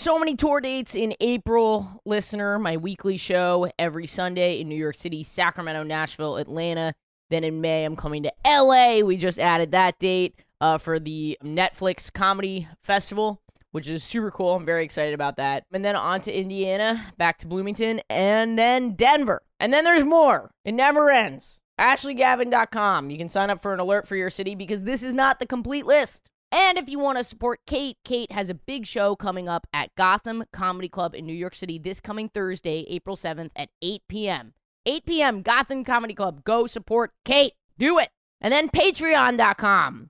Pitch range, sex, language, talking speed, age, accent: 175-240 Hz, female, English, 185 wpm, 20-39, American